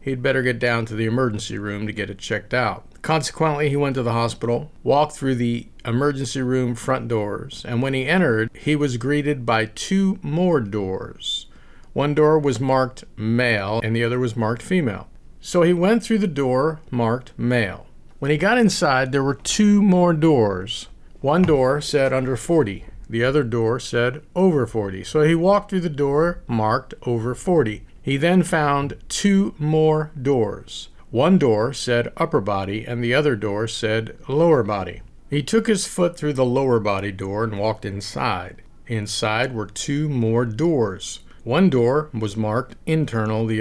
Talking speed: 175 wpm